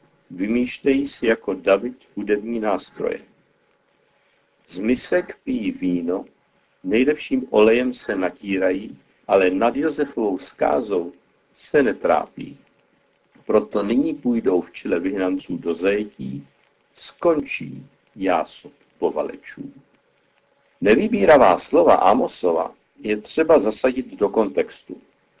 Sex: male